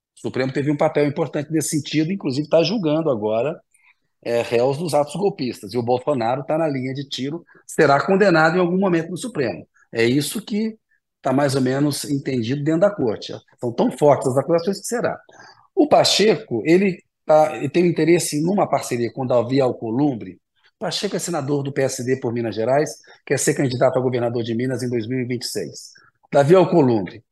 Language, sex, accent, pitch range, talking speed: Portuguese, male, Brazilian, 130-165 Hz, 180 wpm